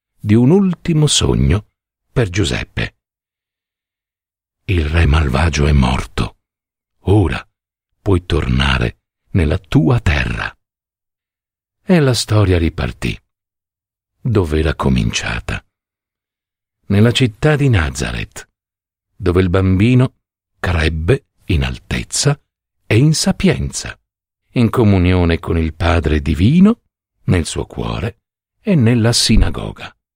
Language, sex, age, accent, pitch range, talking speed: Italian, male, 60-79, native, 85-110 Hz, 100 wpm